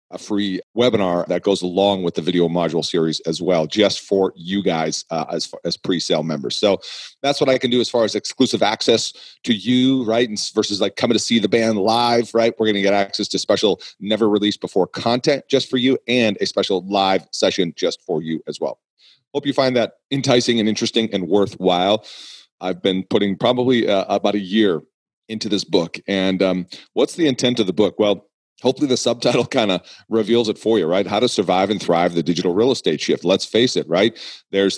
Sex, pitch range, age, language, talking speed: male, 90-115 Hz, 40-59, English, 215 wpm